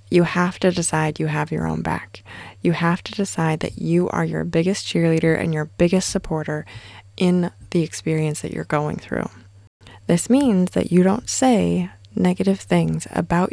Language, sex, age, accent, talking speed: English, female, 20-39, American, 175 wpm